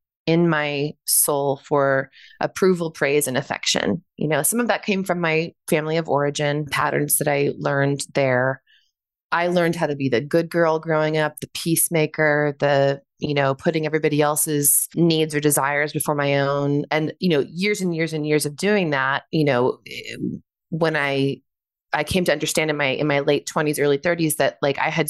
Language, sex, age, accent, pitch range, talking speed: English, female, 20-39, American, 140-170 Hz, 190 wpm